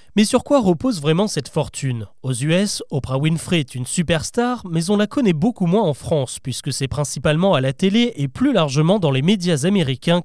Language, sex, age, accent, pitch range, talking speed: French, male, 30-49, French, 140-205 Hz, 205 wpm